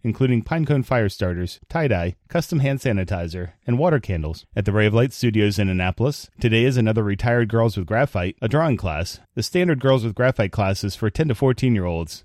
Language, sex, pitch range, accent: English, male, 100-130 Hz, American